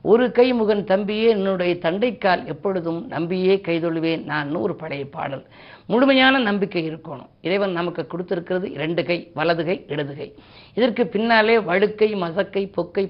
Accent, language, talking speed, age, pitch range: native, Tamil, 130 wpm, 50-69, 165-210 Hz